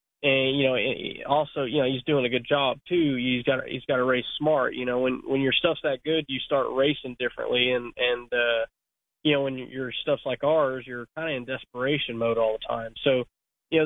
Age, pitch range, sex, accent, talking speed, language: 20-39, 125-145 Hz, male, American, 235 wpm, English